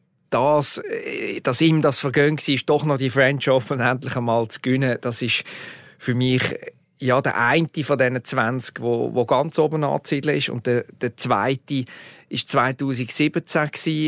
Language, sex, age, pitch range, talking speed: German, male, 40-59, 120-140 Hz, 155 wpm